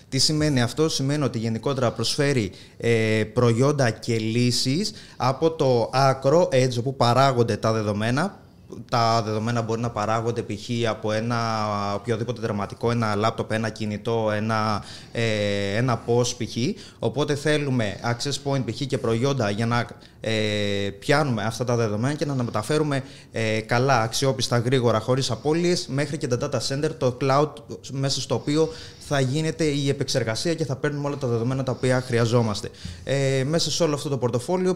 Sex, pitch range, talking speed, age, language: male, 115-140 Hz, 145 wpm, 20-39, Greek